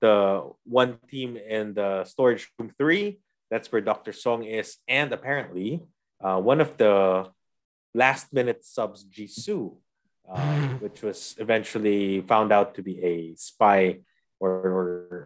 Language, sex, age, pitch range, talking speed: English, male, 20-39, 95-120 Hz, 135 wpm